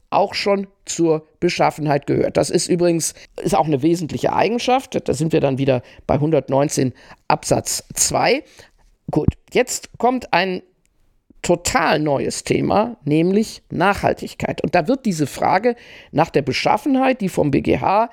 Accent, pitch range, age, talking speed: German, 160-230 Hz, 50-69, 140 wpm